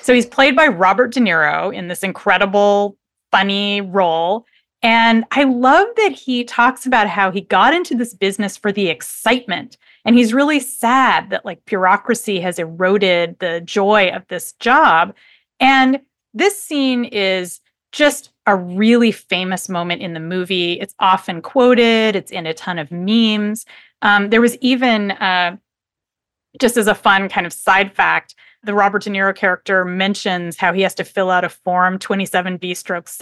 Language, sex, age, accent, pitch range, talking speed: English, female, 30-49, American, 185-250 Hz, 165 wpm